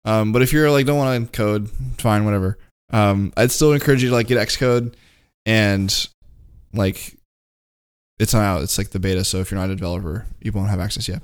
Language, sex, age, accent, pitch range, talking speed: English, male, 10-29, American, 95-125 Hz, 210 wpm